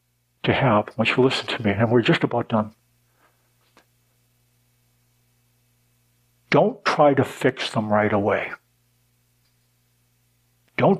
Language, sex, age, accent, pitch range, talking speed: English, male, 60-79, American, 110-155 Hz, 110 wpm